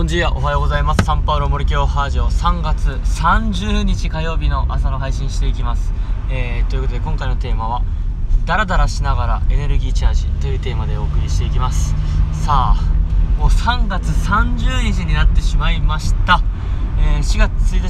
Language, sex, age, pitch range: Japanese, male, 20-39, 75-120 Hz